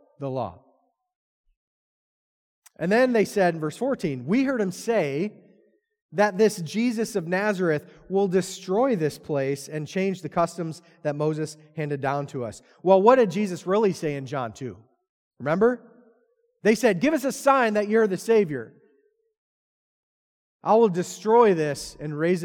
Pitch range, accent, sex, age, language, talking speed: 155-230 Hz, American, male, 30-49, English, 155 wpm